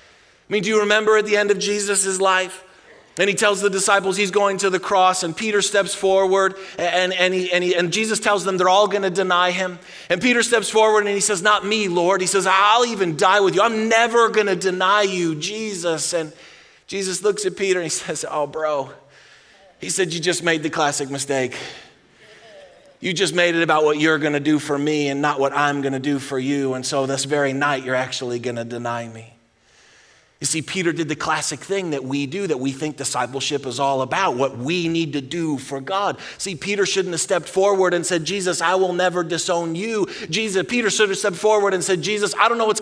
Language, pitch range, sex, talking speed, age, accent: English, 150-200 Hz, male, 225 wpm, 30-49, American